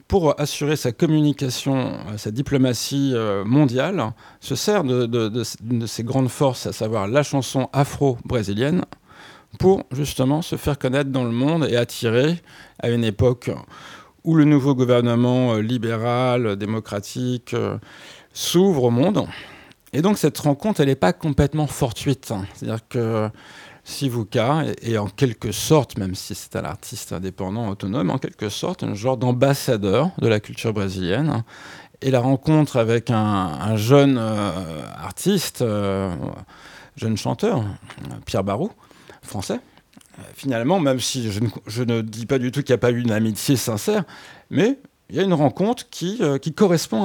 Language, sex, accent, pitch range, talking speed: French, male, French, 115-150 Hz, 155 wpm